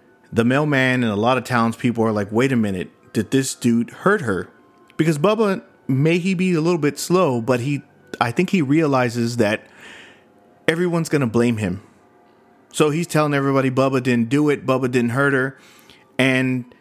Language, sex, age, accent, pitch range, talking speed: English, male, 30-49, American, 115-150 Hz, 180 wpm